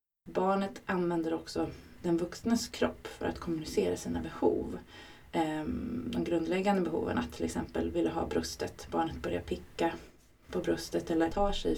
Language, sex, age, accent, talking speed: Swedish, female, 20-39, native, 145 wpm